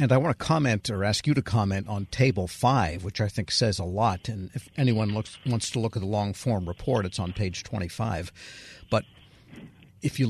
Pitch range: 100-120 Hz